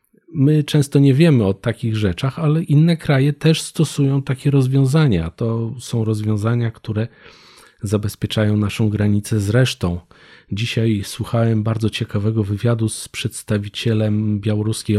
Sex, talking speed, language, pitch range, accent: male, 120 wpm, Polish, 105-135 Hz, native